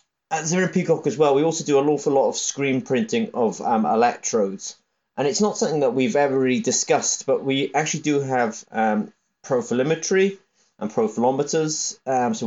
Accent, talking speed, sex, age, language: British, 180 wpm, male, 30-49, English